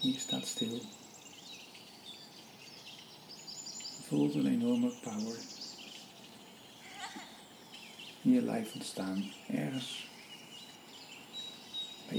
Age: 60-79